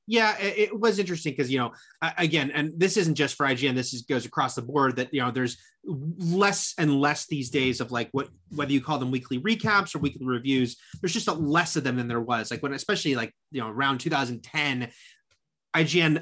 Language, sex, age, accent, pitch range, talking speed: English, male, 30-49, American, 130-160 Hz, 205 wpm